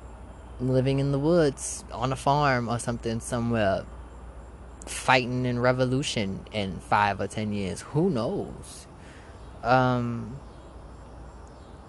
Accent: American